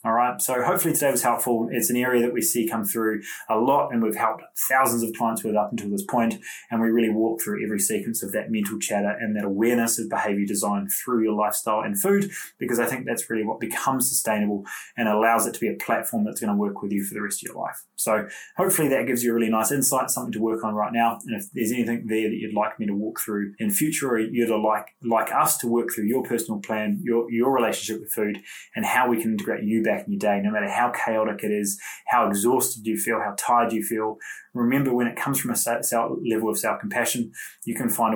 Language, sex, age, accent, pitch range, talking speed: English, male, 20-39, Australian, 105-125 Hz, 250 wpm